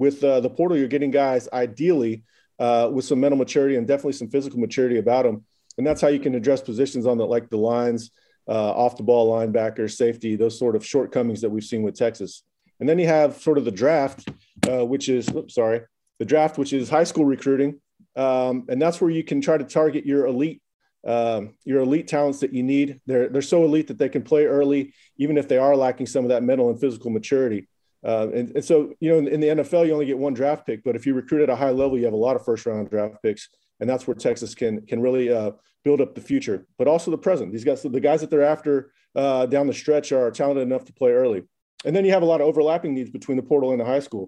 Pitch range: 120-145 Hz